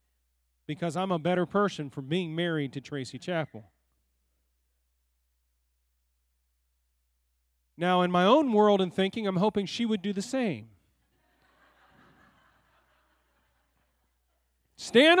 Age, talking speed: 40-59, 105 wpm